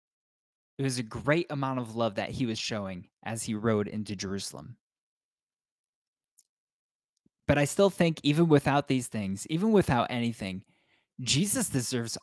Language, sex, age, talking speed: English, male, 20-39, 140 wpm